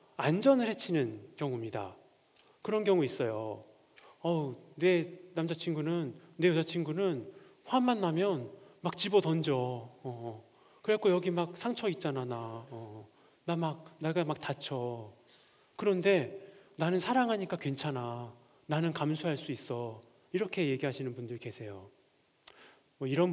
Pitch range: 130-185 Hz